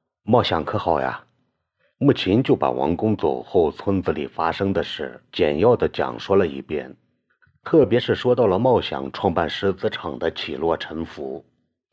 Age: 50-69